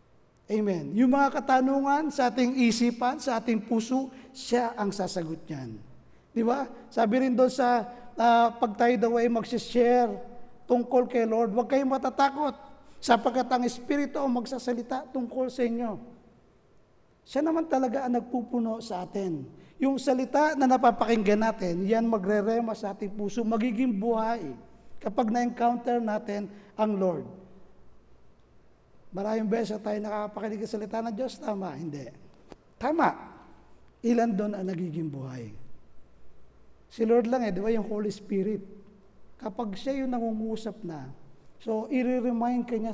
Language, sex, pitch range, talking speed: Filipino, male, 200-245 Hz, 135 wpm